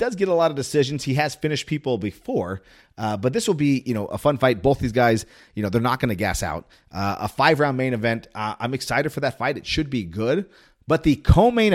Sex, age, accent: male, 30-49, American